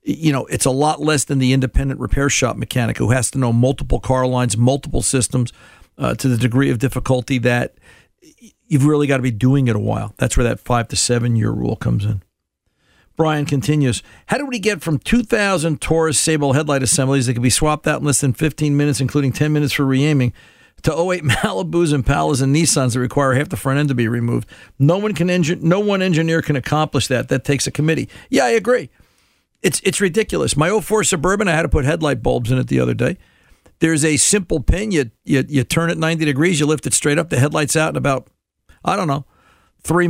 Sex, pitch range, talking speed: male, 130-160 Hz, 220 wpm